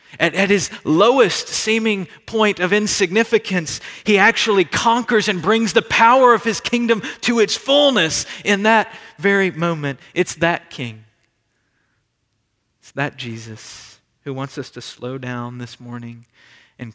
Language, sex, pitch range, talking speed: English, male, 120-170 Hz, 140 wpm